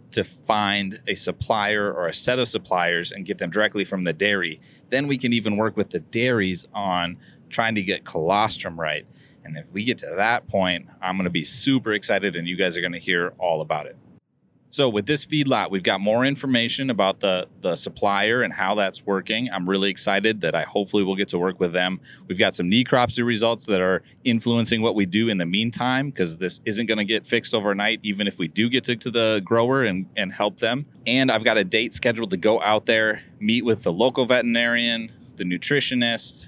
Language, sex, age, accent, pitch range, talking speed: English, male, 30-49, American, 95-120 Hz, 210 wpm